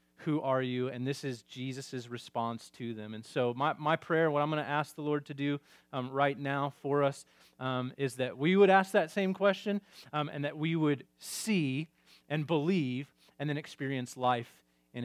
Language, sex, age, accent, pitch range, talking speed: English, male, 30-49, American, 120-150 Hz, 205 wpm